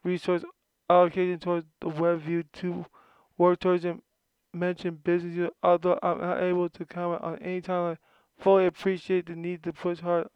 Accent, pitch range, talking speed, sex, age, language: American, 165-180 Hz, 175 wpm, male, 20-39, English